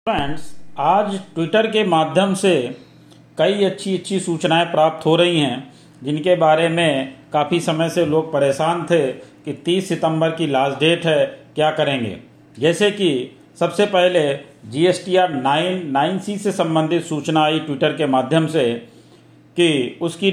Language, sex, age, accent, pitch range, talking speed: Hindi, male, 40-59, native, 140-185 Hz, 140 wpm